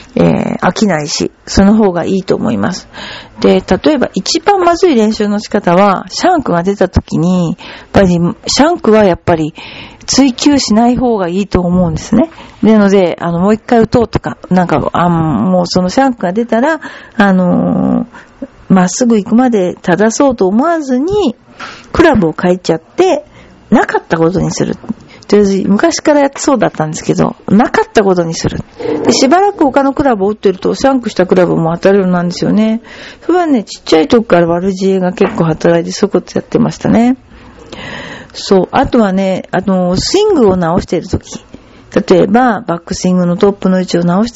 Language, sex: Japanese, female